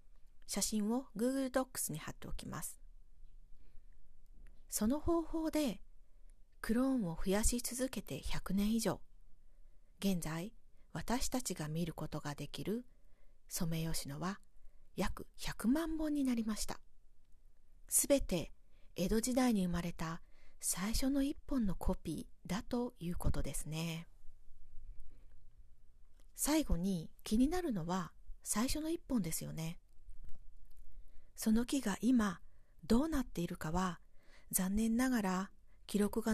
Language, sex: Japanese, female